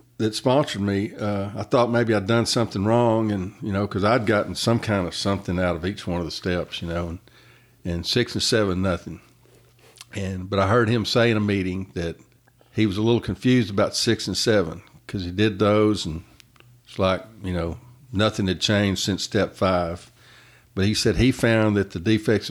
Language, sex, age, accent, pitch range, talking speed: English, male, 50-69, American, 95-110 Hz, 210 wpm